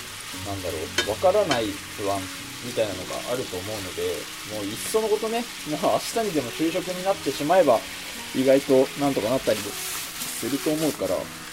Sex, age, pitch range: male, 20-39, 105-165 Hz